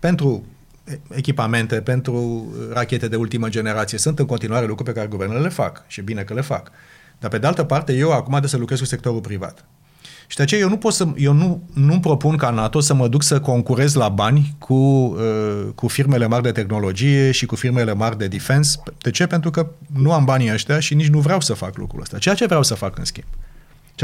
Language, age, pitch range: Romanian, 30-49, 110-145 Hz